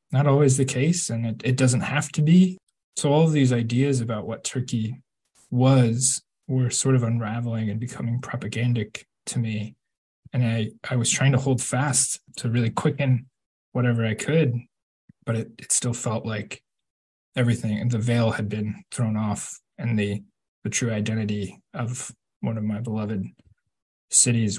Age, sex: 20-39, male